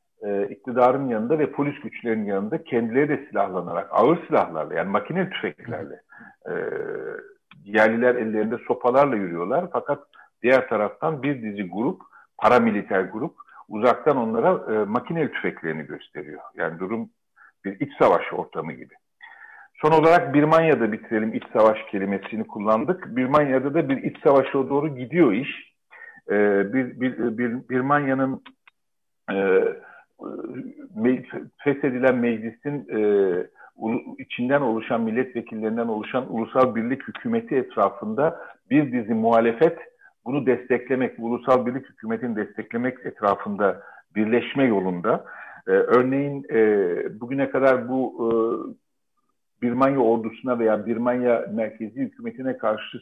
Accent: native